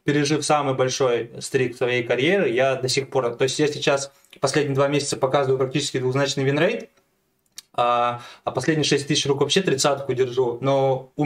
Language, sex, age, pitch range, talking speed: Russian, male, 20-39, 130-150 Hz, 170 wpm